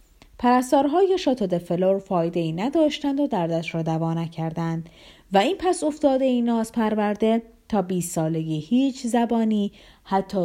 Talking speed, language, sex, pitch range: 125 wpm, Persian, female, 165-260 Hz